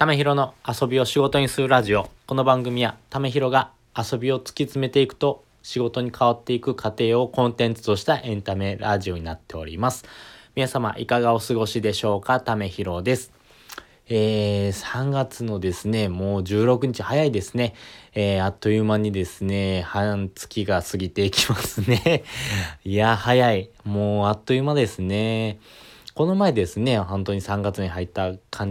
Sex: male